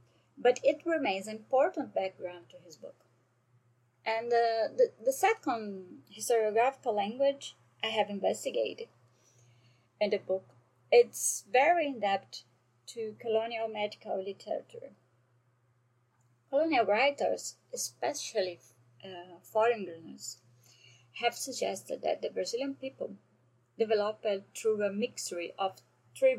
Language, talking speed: English, 105 wpm